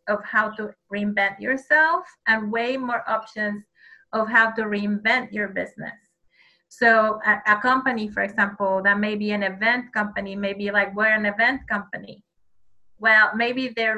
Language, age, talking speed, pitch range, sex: English, 30-49, 155 wpm, 205-235 Hz, female